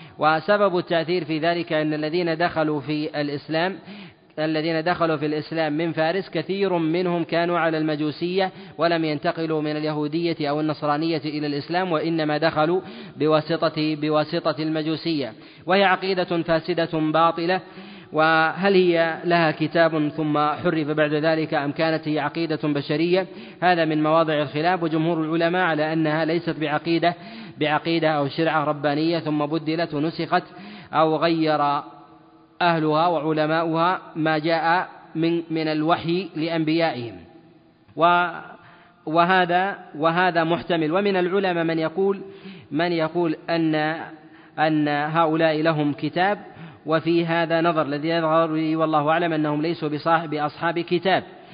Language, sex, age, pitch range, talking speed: Arabic, male, 30-49, 155-170 Hz, 120 wpm